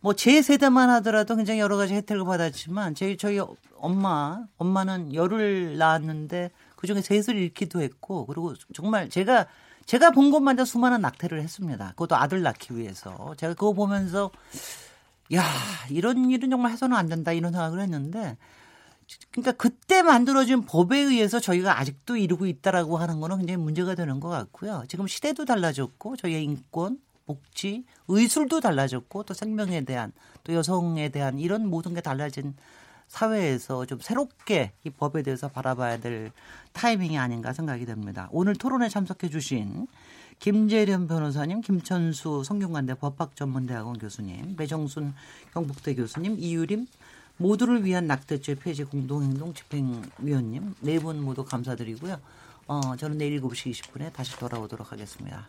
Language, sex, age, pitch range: Korean, male, 40-59, 140-205 Hz